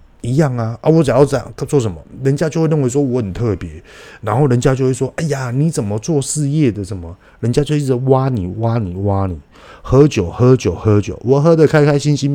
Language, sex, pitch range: Chinese, male, 95-135 Hz